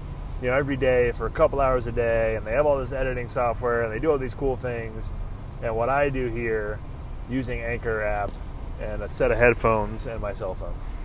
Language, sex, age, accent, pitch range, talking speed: English, male, 20-39, American, 95-120 Hz, 225 wpm